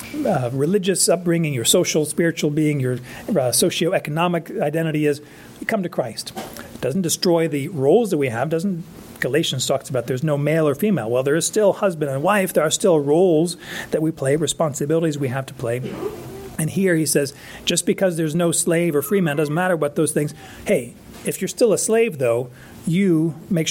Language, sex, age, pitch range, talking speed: English, male, 40-59, 140-185 Hz, 195 wpm